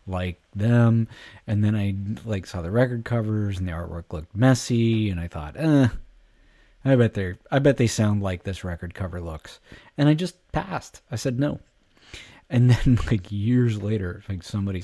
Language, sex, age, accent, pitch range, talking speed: English, male, 30-49, American, 90-115 Hz, 185 wpm